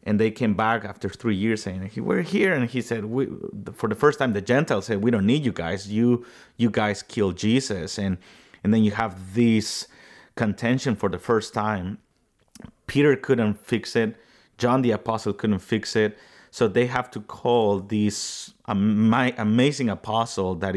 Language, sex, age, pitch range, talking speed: English, male, 30-49, 100-125 Hz, 180 wpm